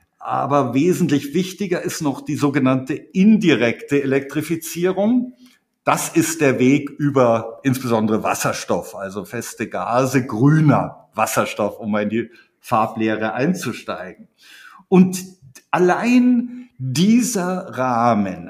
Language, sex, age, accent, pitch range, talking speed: German, male, 50-69, German, 125-165 Hz, 95 wpm